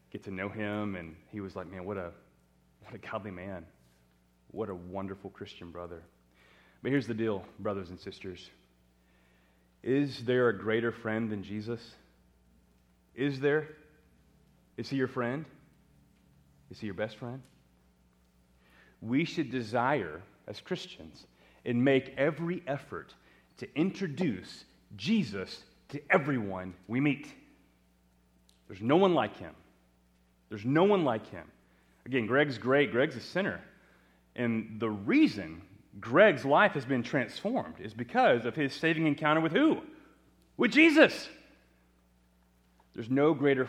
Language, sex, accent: English, male, American